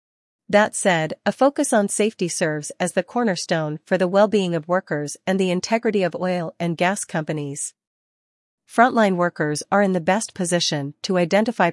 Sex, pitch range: female, 160-200 Hz